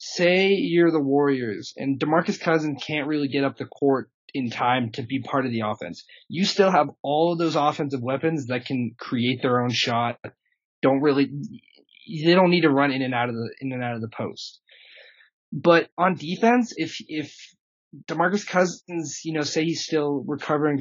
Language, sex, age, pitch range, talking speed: English, male, 20-39, 120-150 Hz, 190 wpm